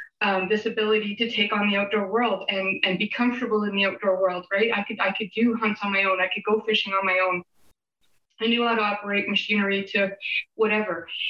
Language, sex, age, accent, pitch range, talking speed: English, female, 20-39, American, 200-230 Hz, 225 wpm